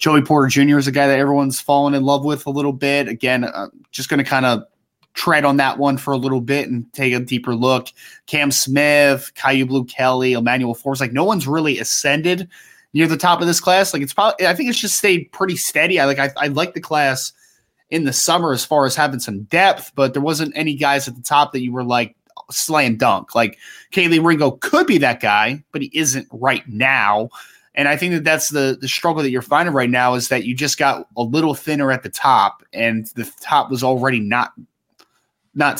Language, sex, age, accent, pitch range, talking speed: English, male, 20-39, American, 125-145 Hz, 230 wpm